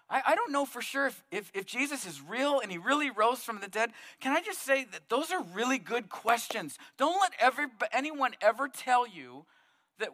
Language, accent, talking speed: English, American, 215 wpm